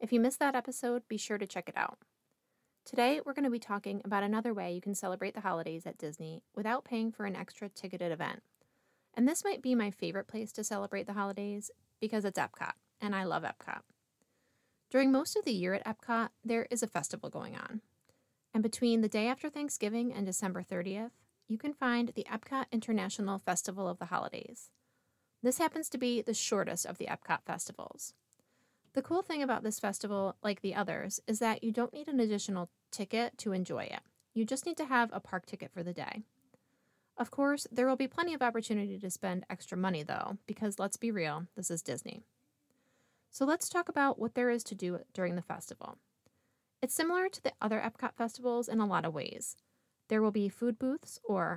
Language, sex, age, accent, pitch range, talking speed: English, female, 20-39, American, 195-245 Hz, 205 wpm